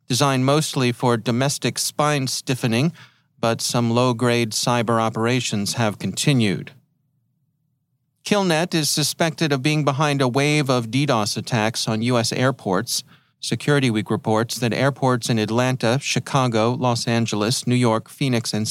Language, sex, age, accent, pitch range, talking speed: English, male, 40-59, American, 115-145 Hz, 130 wpm